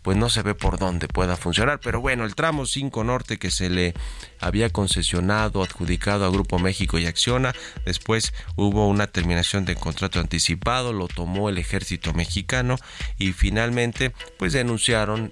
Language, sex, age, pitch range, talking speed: Spanish, male, 30-49, 90-115 Hz, 160 wpm